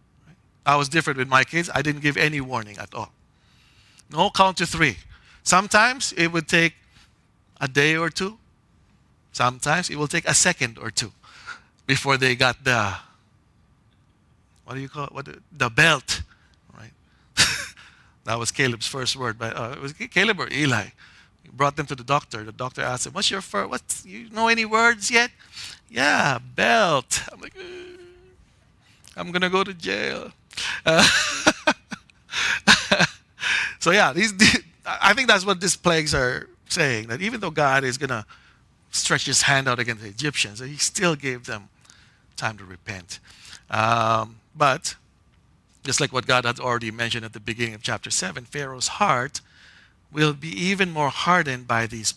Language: English